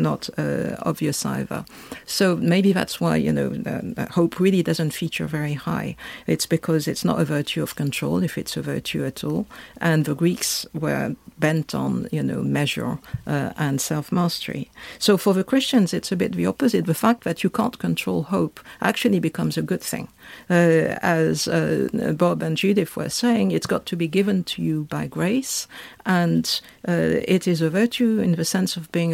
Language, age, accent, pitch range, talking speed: English, 50-69, French, 160-205 Hz, 190 wpm